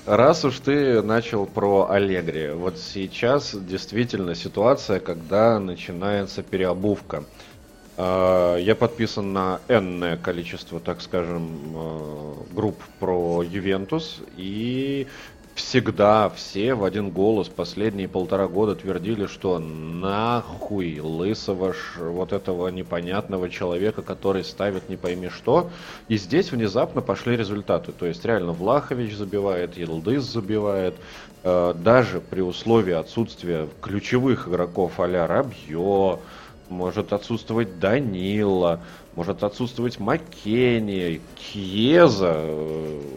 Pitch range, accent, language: 85-110 Hz, native, Russian